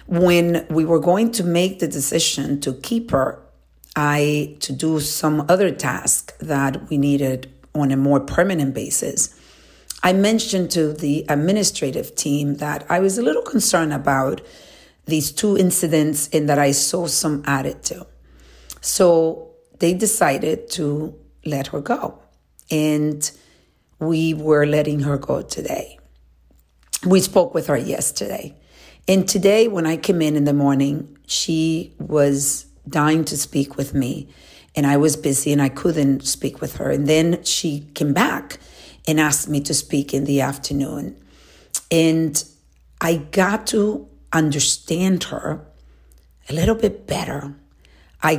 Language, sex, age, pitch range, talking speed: English, female, 50-69, 140-170 Hz, 145 wpm